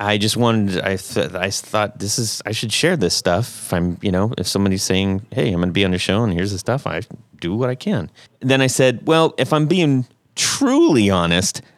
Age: 30-49